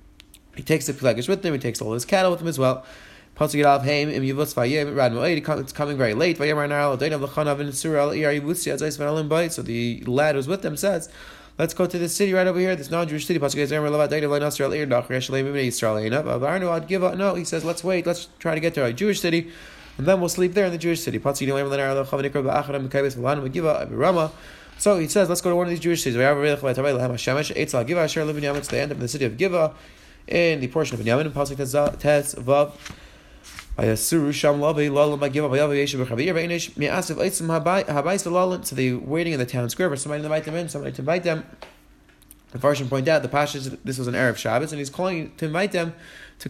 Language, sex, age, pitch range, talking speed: English, male, 20-39, 140-170 Hz, 175 wpm